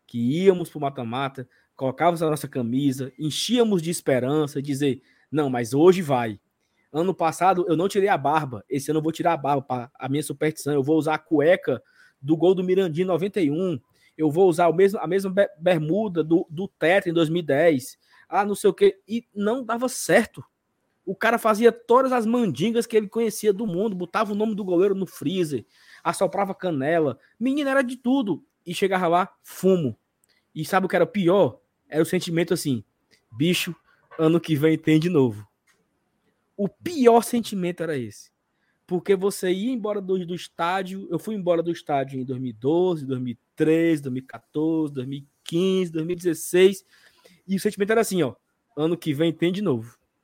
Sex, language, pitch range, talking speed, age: male, Portuguese, 150-200 Hz, 175 wpm, 20-39